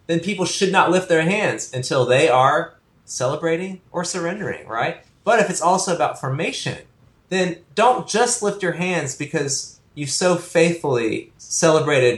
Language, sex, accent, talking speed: English, male, American, 155 wpm